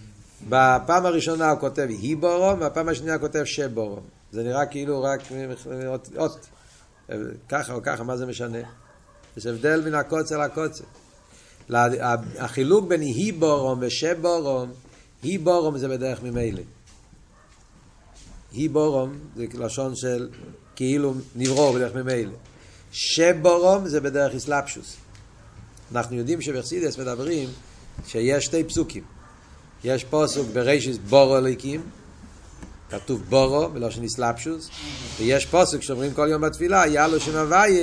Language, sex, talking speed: Hebrew, male, 110 wpm